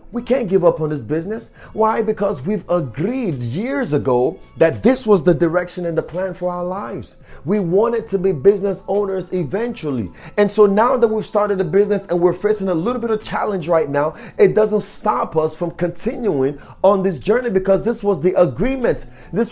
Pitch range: 175-220 Hz